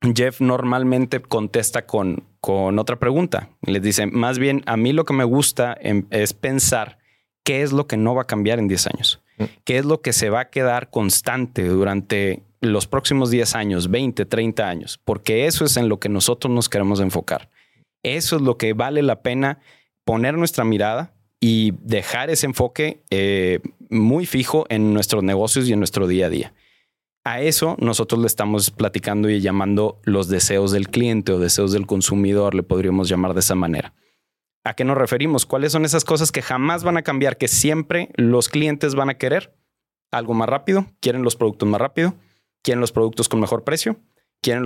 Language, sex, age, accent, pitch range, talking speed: Spanish, male, 30-49, Mexican, 105-135 Hz, 190 wpm